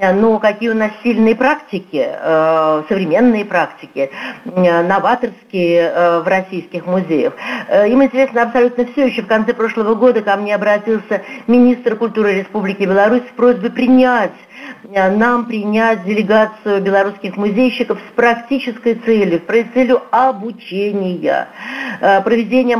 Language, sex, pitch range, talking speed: Russian, female, 195-240 Hz, 115 wpm